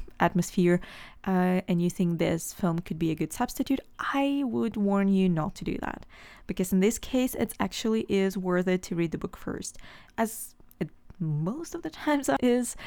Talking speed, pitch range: 185 wpm, 175-225 Hz